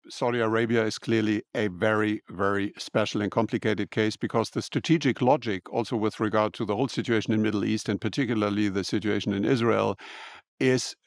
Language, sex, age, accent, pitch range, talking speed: English, male, 50-69, German, 105-125 Hz, 175 wpm